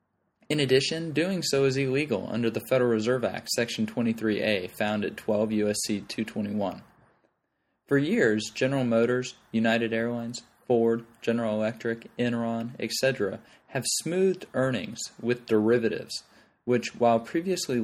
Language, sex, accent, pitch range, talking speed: English, male, American, 110-130 Hz, 125 wpm